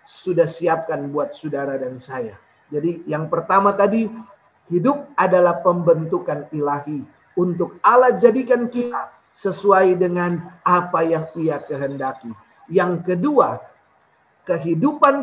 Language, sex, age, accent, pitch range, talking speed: Indonesian, male, 40-59, native, 165-215 Hz, 105 wpm